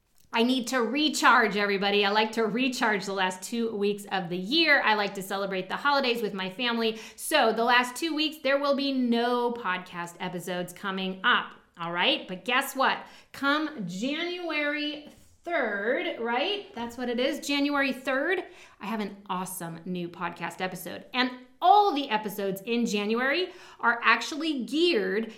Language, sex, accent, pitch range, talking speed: English, female, American, 205-275 Hz, 165 wpm